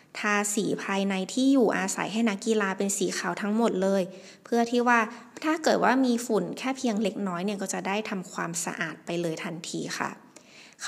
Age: 20-39